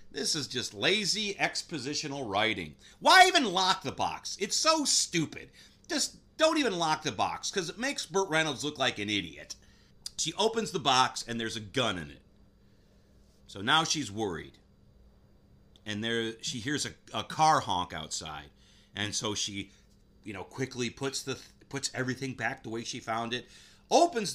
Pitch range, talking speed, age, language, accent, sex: 100-150 Hz, 170 wpm, 40-59, English, American, male